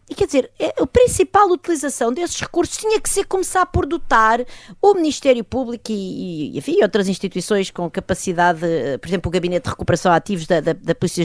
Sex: female